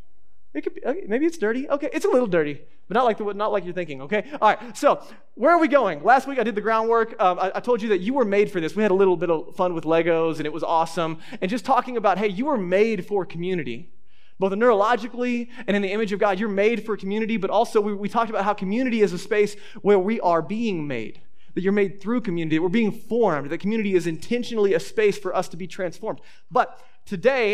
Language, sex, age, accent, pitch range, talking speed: English, male, 20-39, American, 180-225 Hz, 255 wpm